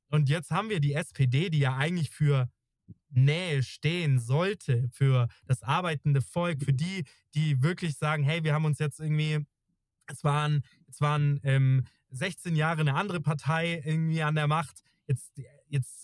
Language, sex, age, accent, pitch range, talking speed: German, male, 20-39, German, 130-155 Hz, 160 wpm